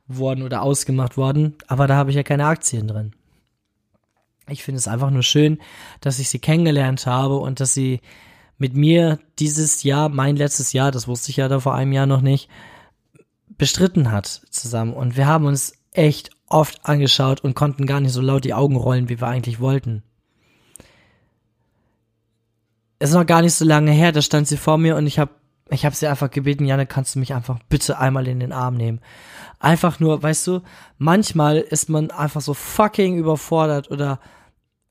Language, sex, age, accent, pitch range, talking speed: German, male, 20-39, German, 125-155 Hz, 190 wpm